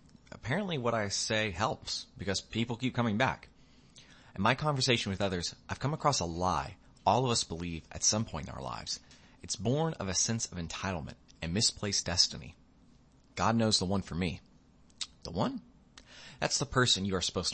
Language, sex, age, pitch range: English, male, 30-49, 85-115 Hz